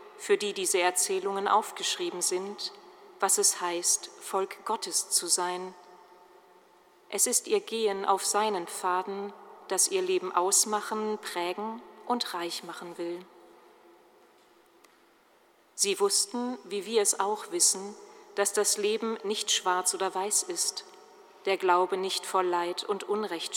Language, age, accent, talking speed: German, 40-59, German, 130 wpm